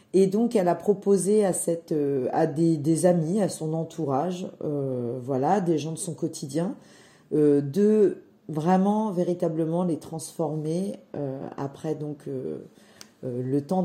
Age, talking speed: 40-59, 145 wpm